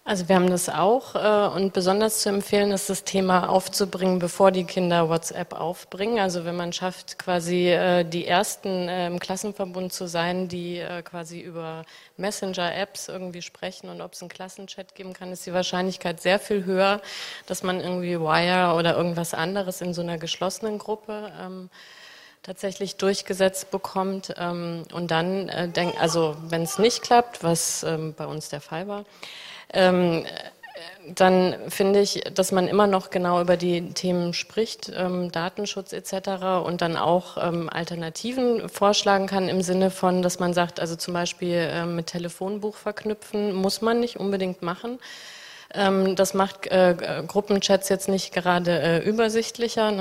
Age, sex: 30-49, female